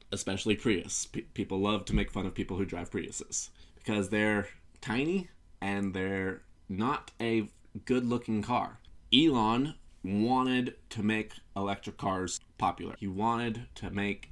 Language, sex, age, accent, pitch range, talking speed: English, male, 20-39, American, 95-110 Hz, 135 wpm